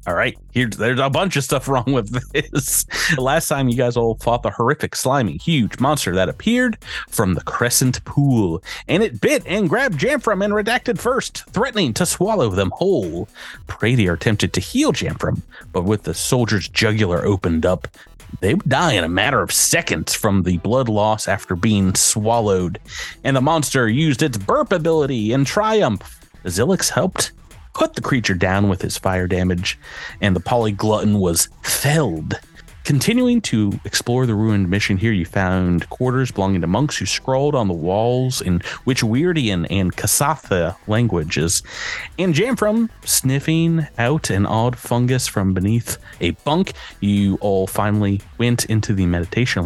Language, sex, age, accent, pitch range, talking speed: English, male, 30-49, American, 100-145 Hz, 165 wpm